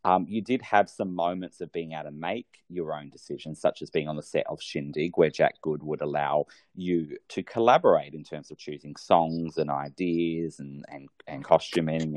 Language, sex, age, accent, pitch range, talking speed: English, male, 30-49, Australian, 75-85 Hz, 200 wpm